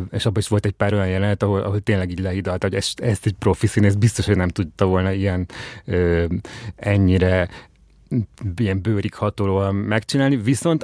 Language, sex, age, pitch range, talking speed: Hungarian, male, 30-49, 95-110 Hz, 185 wpm